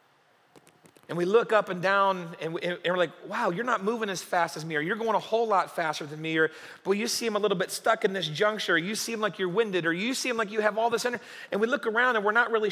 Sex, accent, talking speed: male, American, 290 wpm